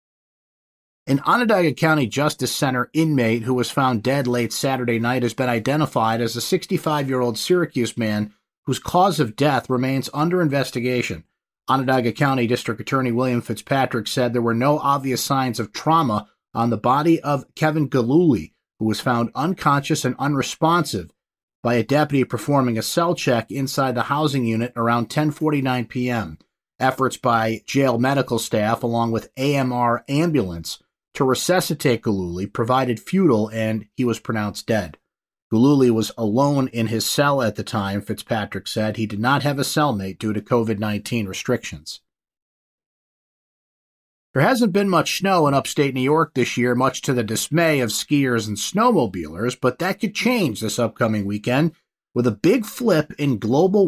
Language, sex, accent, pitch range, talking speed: English, male, American, 115-145 Hz, 155 wpm